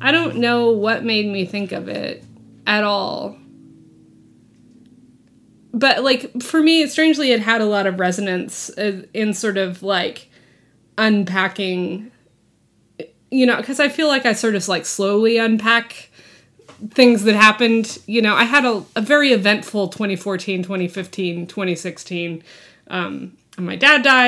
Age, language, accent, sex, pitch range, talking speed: 20-39, English, American, female, 190-235 Hz, 140 wpm